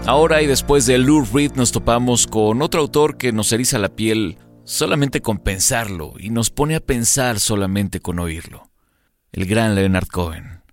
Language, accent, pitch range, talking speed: Spanish, Mexican, 95-120 Hz, 175 wpm